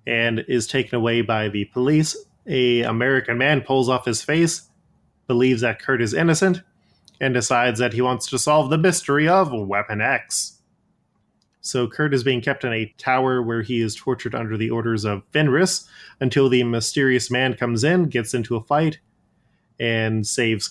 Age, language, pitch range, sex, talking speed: 20-39, English, 115-140 Hz, male, 175 wpm